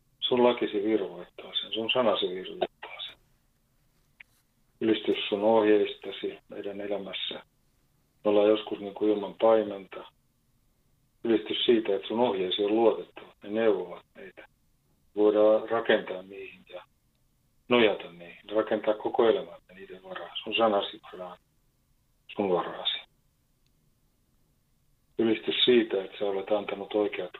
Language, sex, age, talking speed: Finnish, male, 40-59, 120 wpm